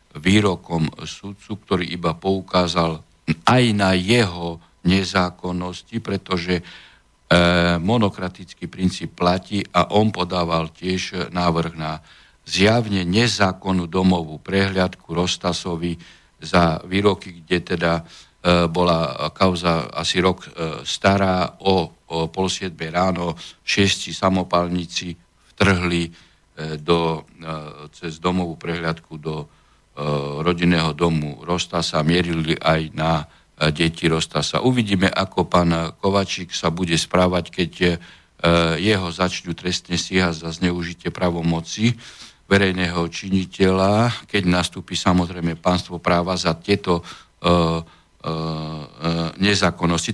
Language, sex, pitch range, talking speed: Slovak, male, 85-95 Hz, 100 wpm